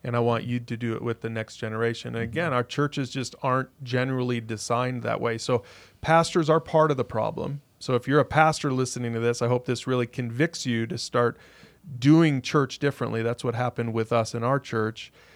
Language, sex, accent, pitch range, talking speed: English, male, American, 120-145 Hz, 215 wpm